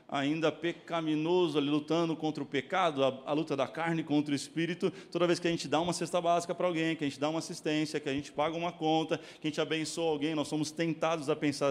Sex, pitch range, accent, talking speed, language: male, 120-155 Hz, Brazilian, 245 wpm, Portuguese